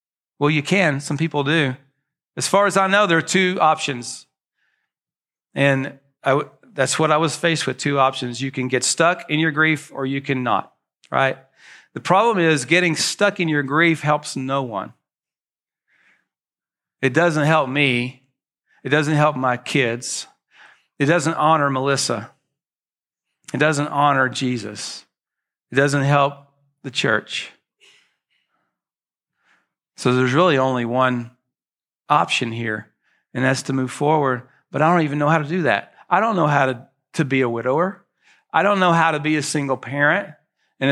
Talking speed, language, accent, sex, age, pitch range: 160 wpm, English, American, male, 40-59, 130-160 Hz